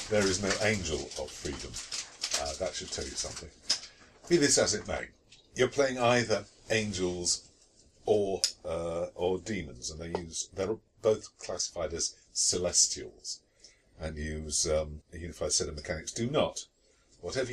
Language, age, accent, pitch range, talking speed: English, 50-69, British, 85-105 Hz, 150 wpm